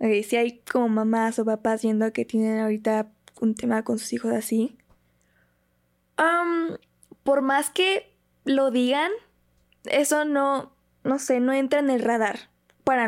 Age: 10-29